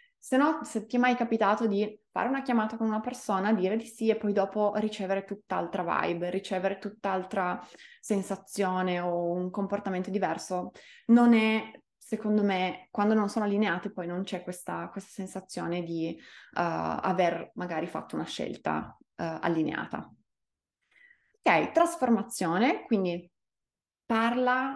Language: Italian